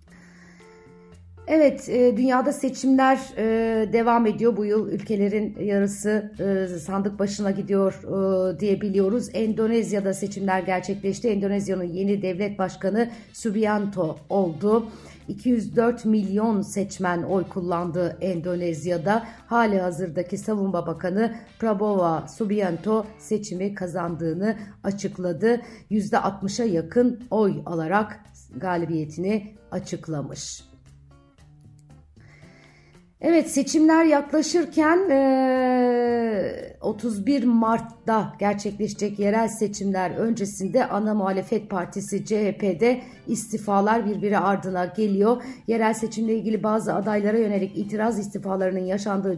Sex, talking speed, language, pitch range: female, 85 wpm, Turkish, 185-225 Hz